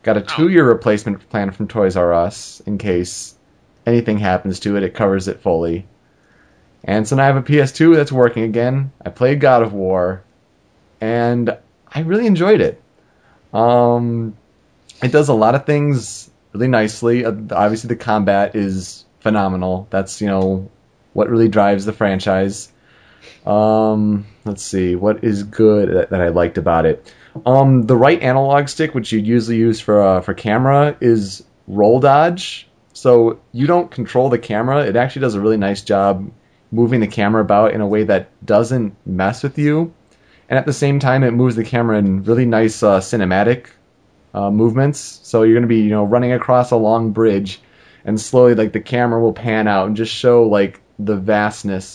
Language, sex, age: English, male, 30-49